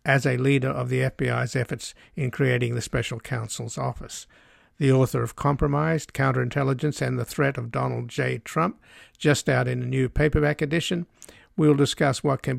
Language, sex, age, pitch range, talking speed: English, male, 60-79, 125-145 Hz, 170 wpm